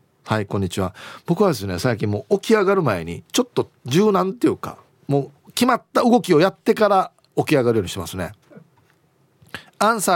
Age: 40-59